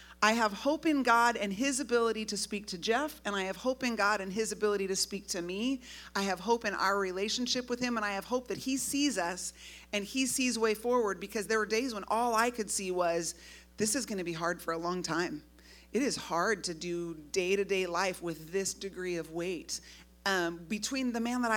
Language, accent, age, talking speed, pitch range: English, American, 30-49, 235 wpm, 175-225 Hz